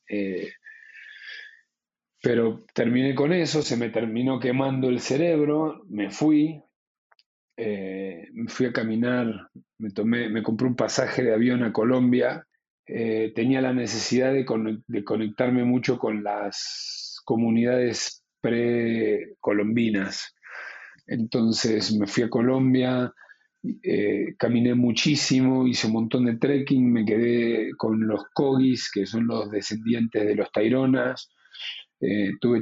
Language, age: Spanish, 40-59